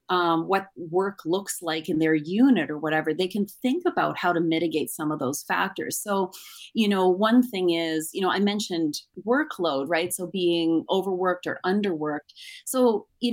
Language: English